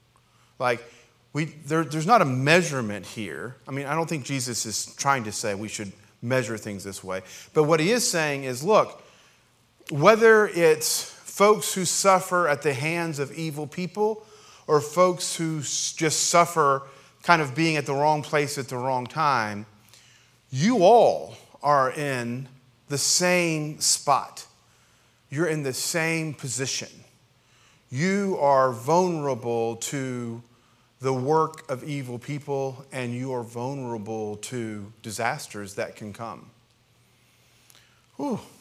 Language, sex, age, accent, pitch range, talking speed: English, male, 40-59, American, 115-155 Hz, 135 wpm